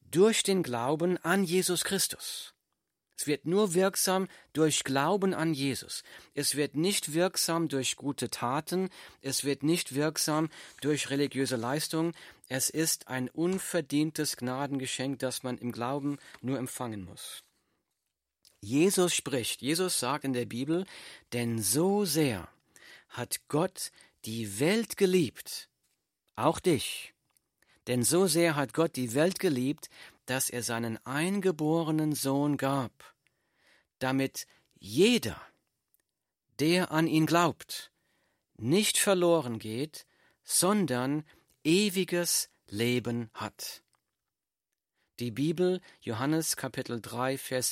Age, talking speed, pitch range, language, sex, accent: 40-59, 115 wpm, 130-175 Hz, German, male, German